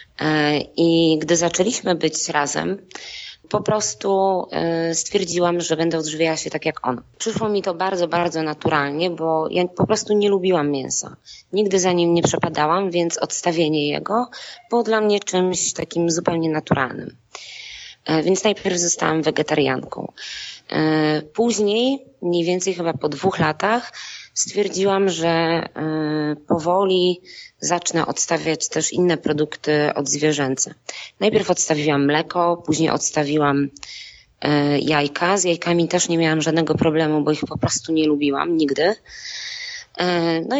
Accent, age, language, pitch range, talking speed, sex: native, 20-39, Polish, 155-190 Hz, 125 wpm, female